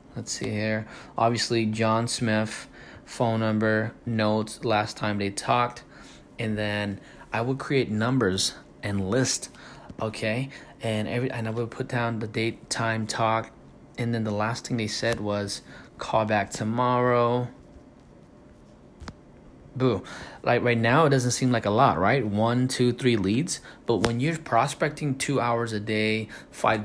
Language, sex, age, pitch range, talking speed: English, male, 20-39, 110-130 Hz, 150 wpm